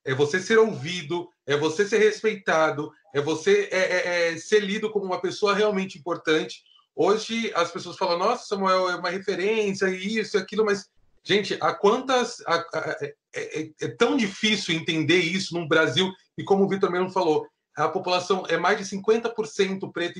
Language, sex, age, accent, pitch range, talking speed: Portuguese, male, 30-49, Brazilian, 170-215 Hz, 170 wpm